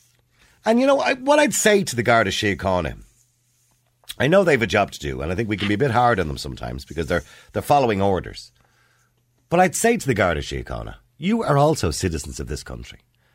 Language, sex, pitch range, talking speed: English, male, 90-125 Hz, 235 wpm